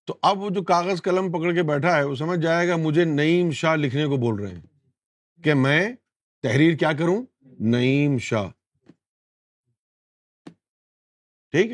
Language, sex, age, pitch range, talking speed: Urdu, male, 50-69, 120-165 Hz, 155 wpm